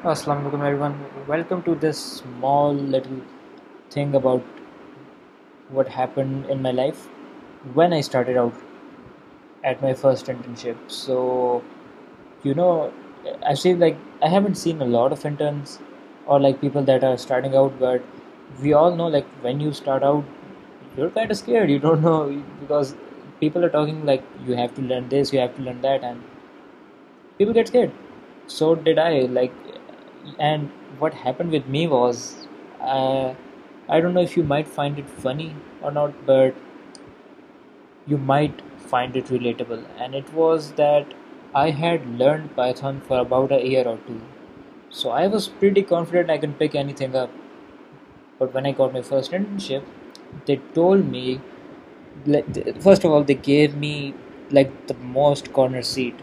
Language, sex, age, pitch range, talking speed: Urdu, male, 20-39, 130-155 Hz, 160 wpm